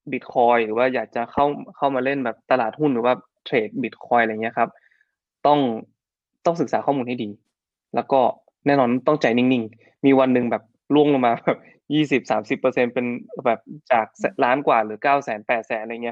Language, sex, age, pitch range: Thai, male, 20-39, 115-140 Hz